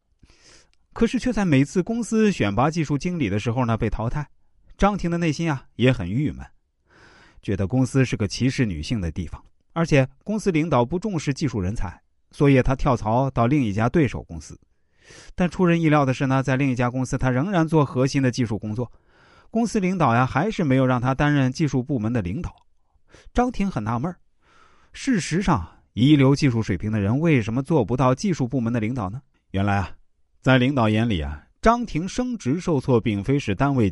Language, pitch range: Chinese, 95-145 Hz